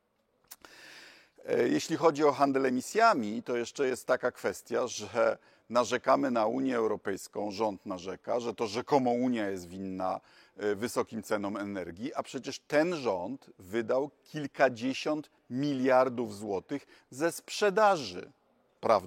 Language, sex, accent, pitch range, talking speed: Polish, male, native, 120-175 Hz, 115 wpm